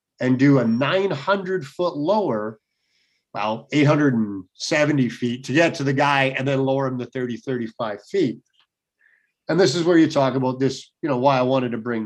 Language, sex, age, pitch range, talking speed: English, male, 50-69, 130-160 Hz, 180 wpm